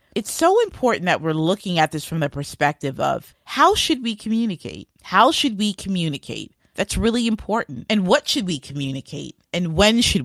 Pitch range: 150-200 Hz